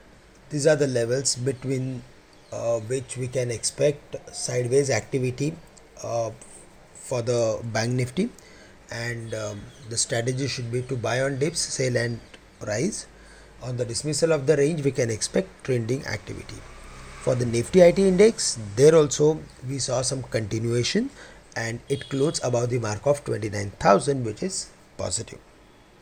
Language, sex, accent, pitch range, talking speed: English, male, Indian, 115-140 Hz, 150 wpm